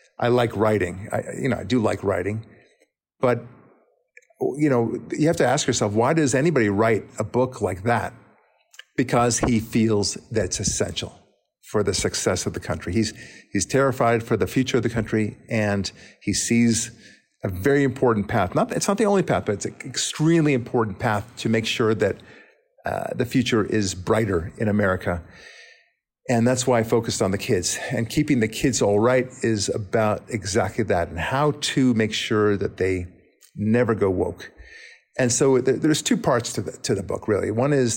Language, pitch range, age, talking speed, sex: English, 105-125 Hz, 50-69, 185 wpm, male